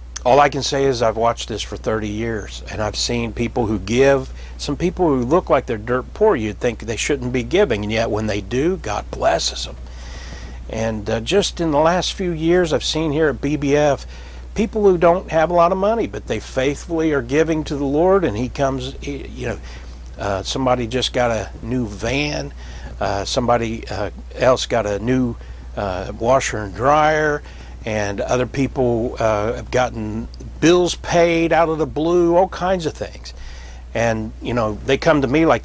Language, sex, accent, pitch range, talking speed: English, male, American, 100-150 Hz, 195 wpm